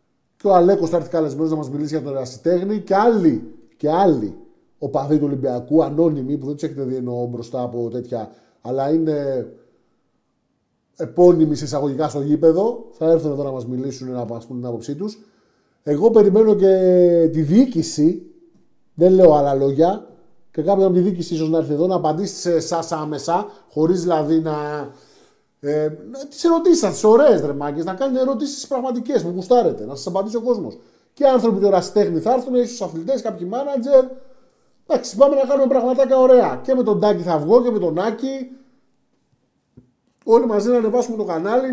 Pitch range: 155-230 Hz